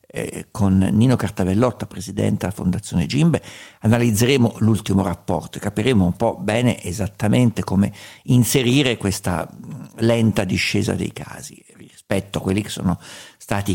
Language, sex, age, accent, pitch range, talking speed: Italian, male, 50-69, native, 100-135 Hz, 125 wpm